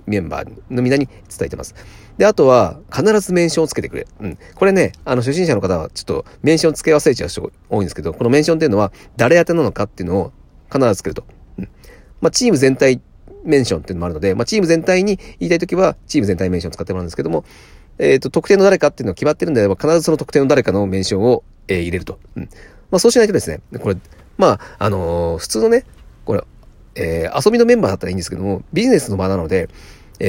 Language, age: Japanese, 40-59